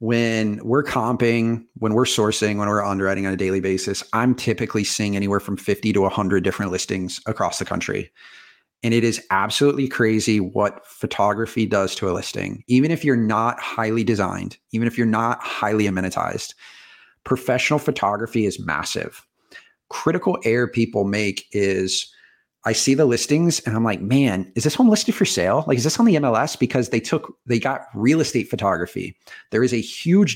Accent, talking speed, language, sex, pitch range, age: American, 180 wpm, English, male, 110-135 Hz, 40-59